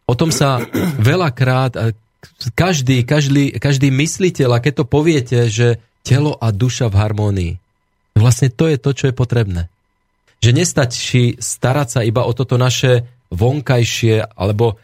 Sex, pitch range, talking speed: male, 110-140 Hz, 140 wpm